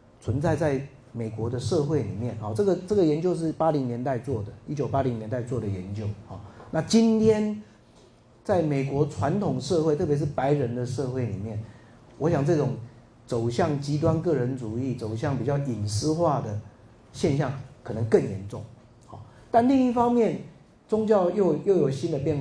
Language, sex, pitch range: Chinese, male, 115-155 Hz